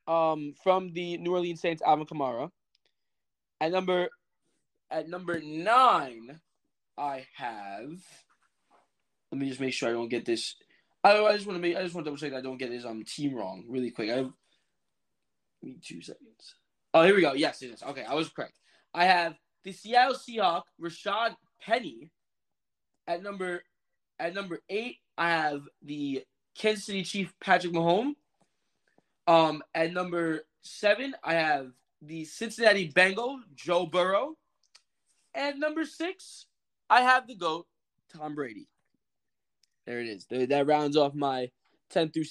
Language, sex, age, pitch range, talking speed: English, male, 20-39, 135-190 Hz, 155 wpm